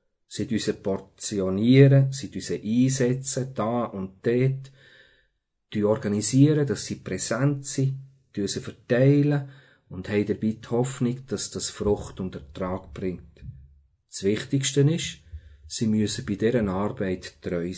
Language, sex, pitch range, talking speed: German, male, 100-130 Hz, 110 wpm